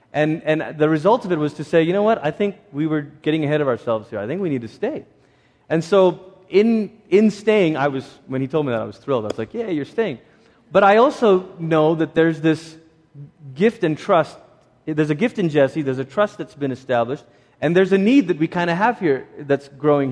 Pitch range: 140-180 Hz